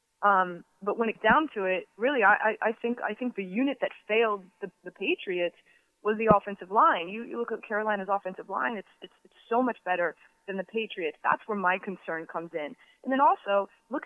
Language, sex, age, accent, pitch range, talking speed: English, female, 20-39, American, 195-235 Hz, 220 wpm